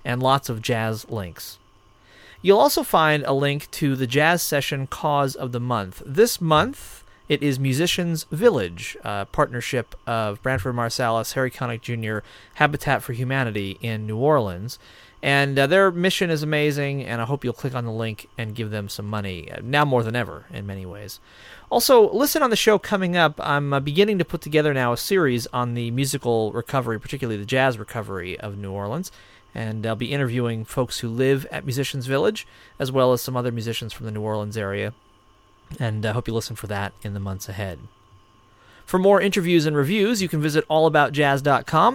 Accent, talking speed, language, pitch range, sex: American, 190 wpm, English, 105-145 Hz, male